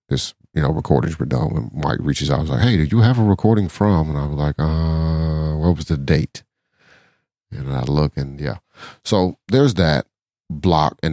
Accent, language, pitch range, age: American, English, 70-85 Hz, 40-59